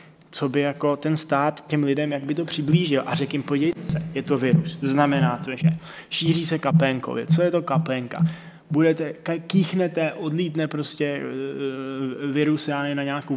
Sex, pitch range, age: male, 140-165 Hz, 20-39